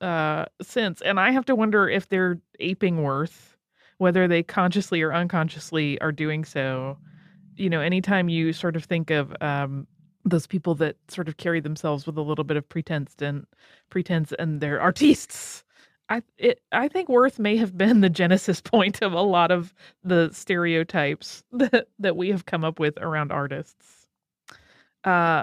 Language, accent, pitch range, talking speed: English, American, 165-220 Hz, 170 wpm